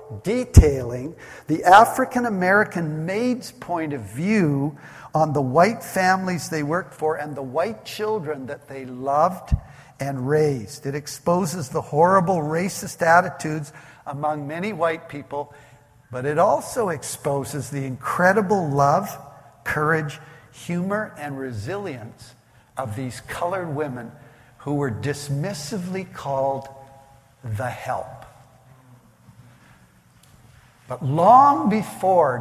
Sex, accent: male, American